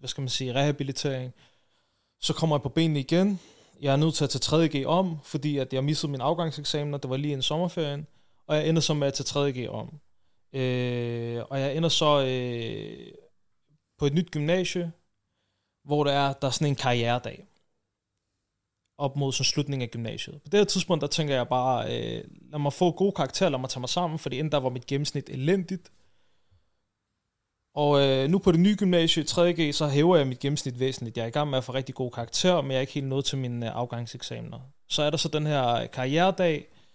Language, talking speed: Danish, 210 wpm